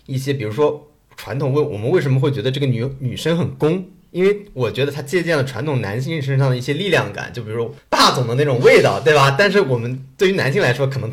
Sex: male